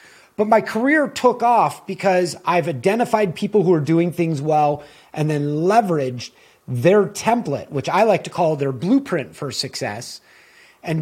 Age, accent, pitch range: 30-49, American, 145-190 Hz